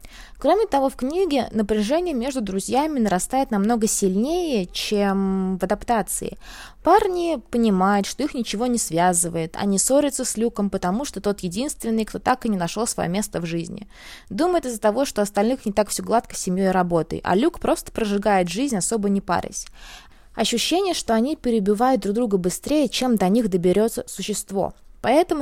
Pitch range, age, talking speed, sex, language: 195-270 Hz, 20-39, 165 wpm, female, Russian